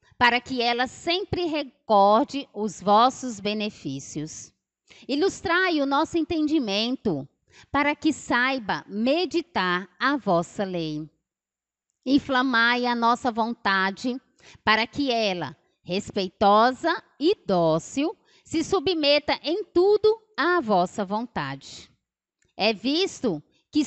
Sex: female